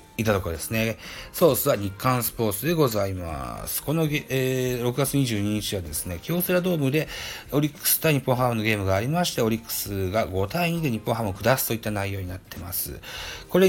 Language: Japanese